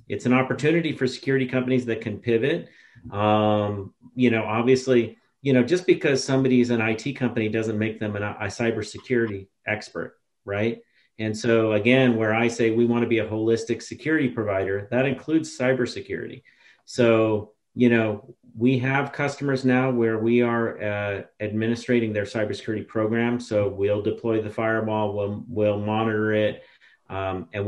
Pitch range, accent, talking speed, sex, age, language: 105-125 Hz, American, 150 wpm, male, 40-59, English